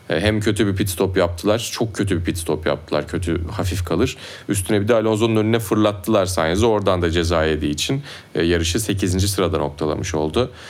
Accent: native